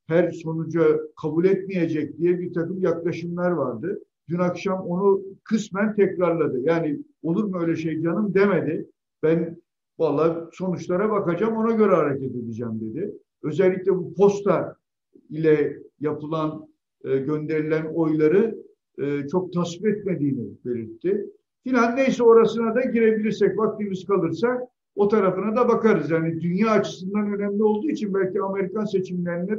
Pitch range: 165-205 Hz